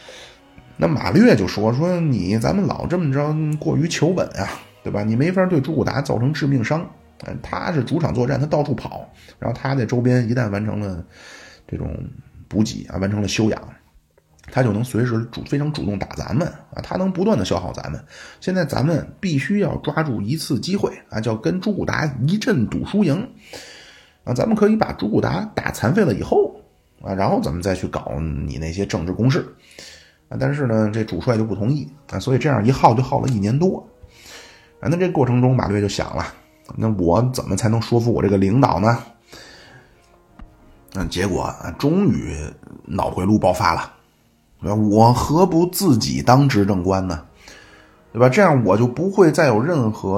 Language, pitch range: Chinese, 100-140 Hz